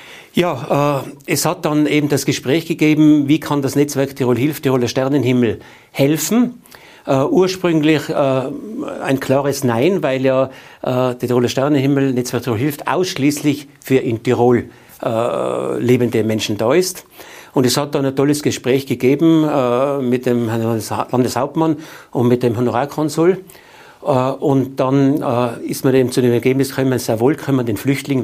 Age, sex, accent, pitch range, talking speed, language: 60-79, male, German, 125-150 Hz, 150 wpm, German